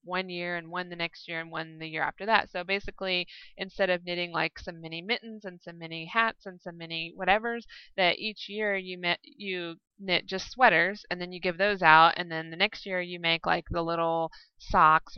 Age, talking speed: 20-39, 215 wpm